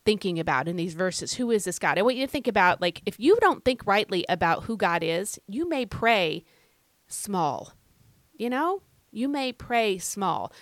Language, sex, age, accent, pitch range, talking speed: English, female, 30-49, American, 180-245 Hz, 200 wpm